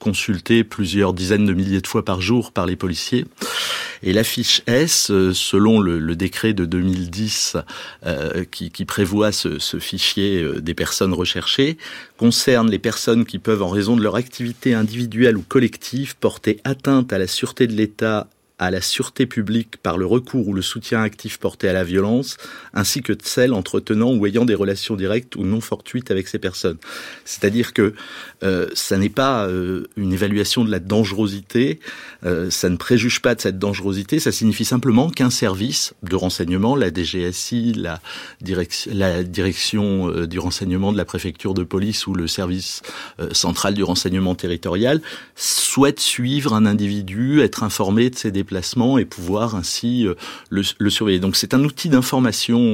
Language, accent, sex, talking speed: French, French, male, 170 wpm